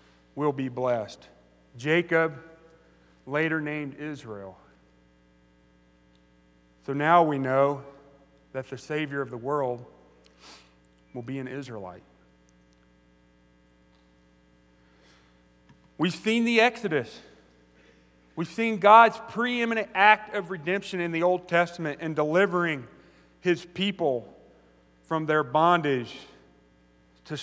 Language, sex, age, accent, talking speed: English, male, 40-59, American, 95 wpm